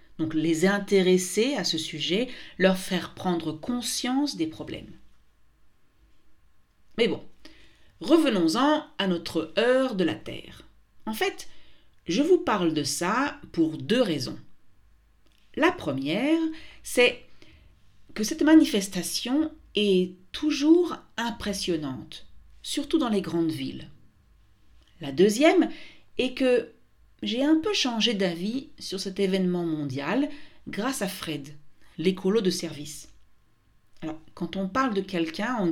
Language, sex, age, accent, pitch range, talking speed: French, female, 50-69, French, 160-265 Hz, 120 wpm